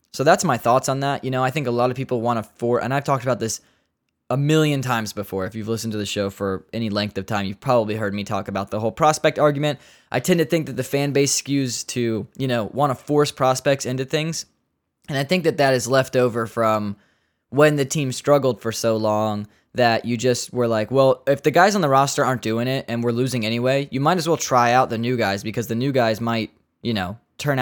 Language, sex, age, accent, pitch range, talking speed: English, male, 10-29, American, 115-145 Hz, 255 wpm